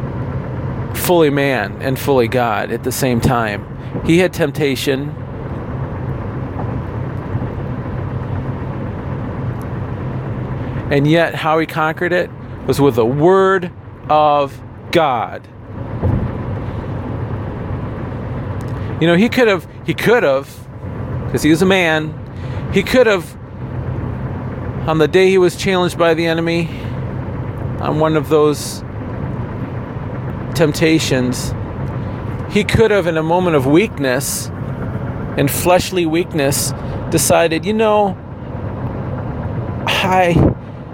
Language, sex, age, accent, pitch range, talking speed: English, male, 40-59, American, 120-160 Hz, 100 wpm